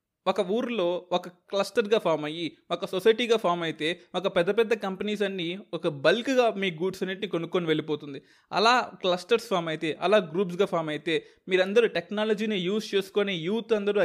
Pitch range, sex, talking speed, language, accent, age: 175-215 Hz, male, 155 wpm, Telugu, native, 20-39